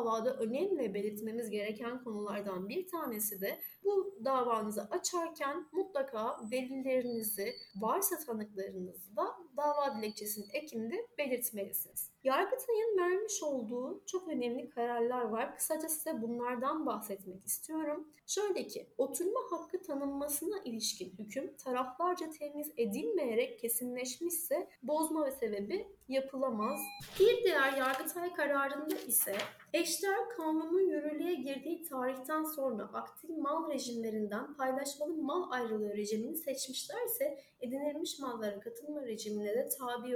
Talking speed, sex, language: 110 wpm, female, Turkish